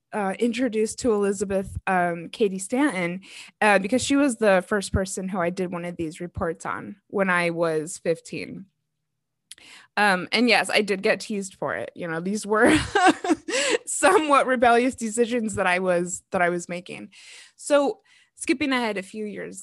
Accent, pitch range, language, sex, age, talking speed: American, 180-225 Hz, English, female, 20-39, 170 wpm